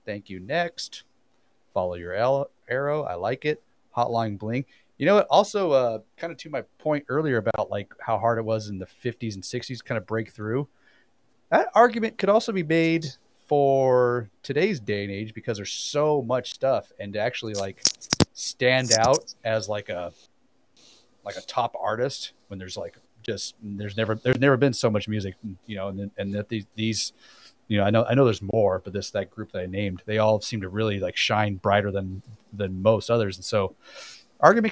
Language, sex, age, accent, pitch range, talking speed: English, male, 30-49, American, 100-130 Hz, 195 wpm